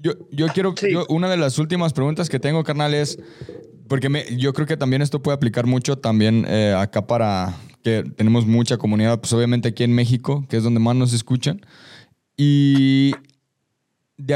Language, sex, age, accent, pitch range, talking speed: Spanish, male, 20-39, Mexican, 120-150 Hz, 185 wpm